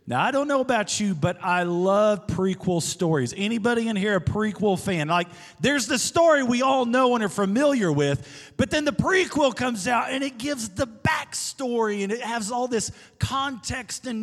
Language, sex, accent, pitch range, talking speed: English, male, American, 185-245 Hz, 195 wpm